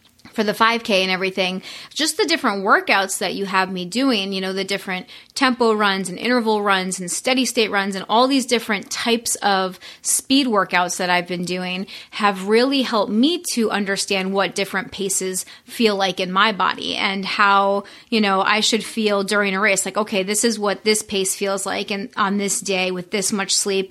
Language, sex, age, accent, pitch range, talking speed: English, female, 30-49, American, 195-230 Hz, 200 wpm